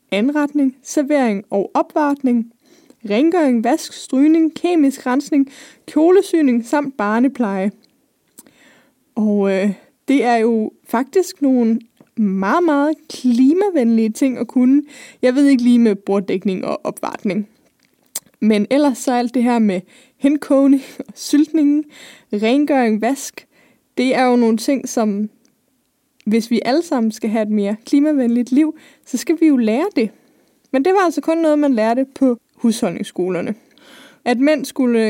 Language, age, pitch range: Danish, 20-39, 230-290 Hz